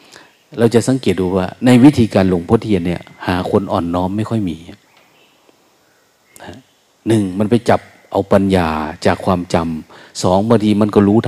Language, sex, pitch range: Thai, male, 100-130 Hz